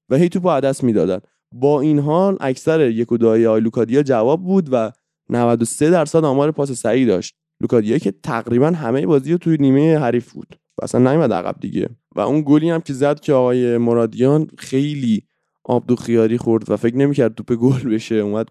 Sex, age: male, 20-39